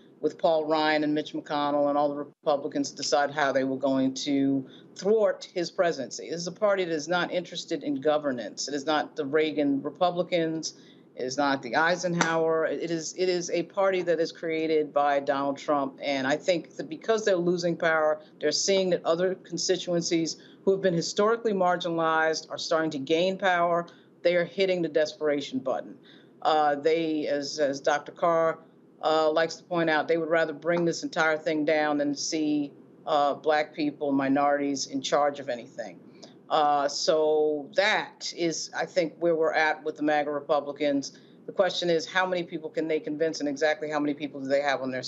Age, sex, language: 50-69, female, English